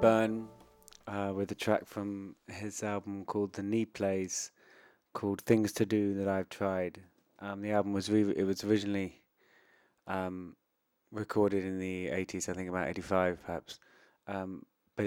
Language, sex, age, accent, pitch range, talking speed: English, male, 30-49, British, 95-110 Hz, 160 wpm